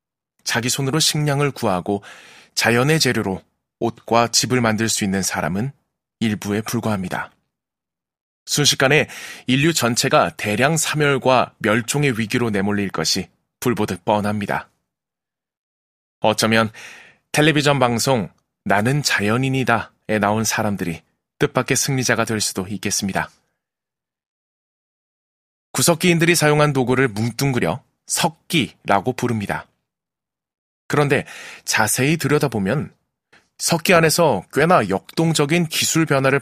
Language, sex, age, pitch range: Korean, male, 20-39, 110-145 Hz